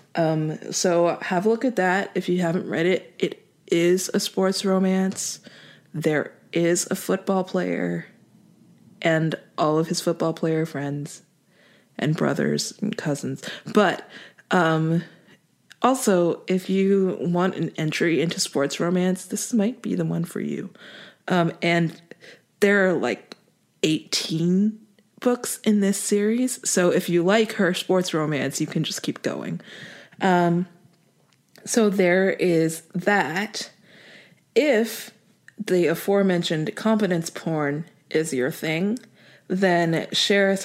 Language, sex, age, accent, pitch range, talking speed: English, female, 20-39, American, 165-200 Hz, 130 wpm